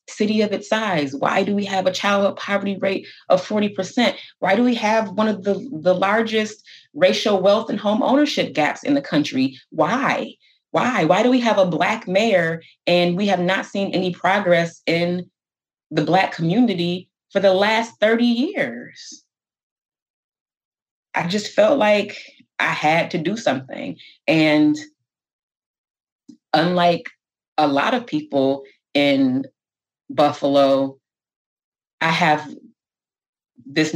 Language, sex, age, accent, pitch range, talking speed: English, female, 30-49, American, 150-245 Hz, 140 wpm